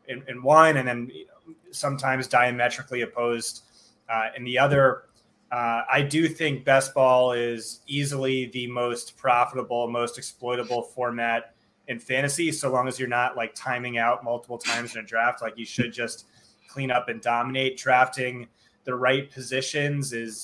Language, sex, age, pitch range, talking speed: English, male, 20-39, 120-135 Hz, 160 wpm